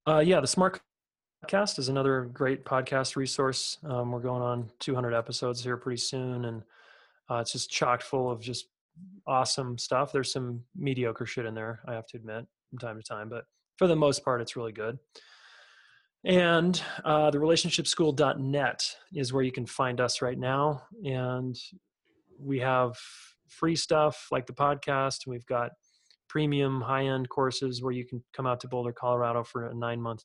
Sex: male